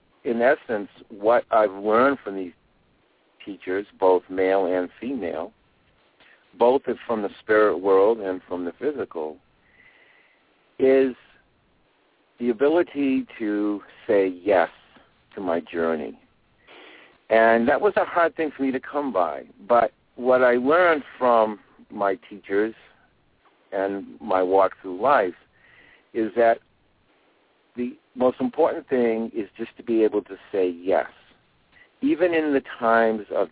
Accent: American